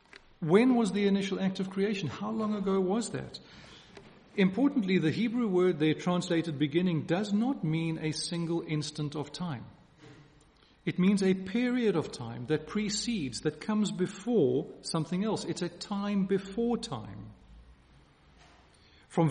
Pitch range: 150-205 Hz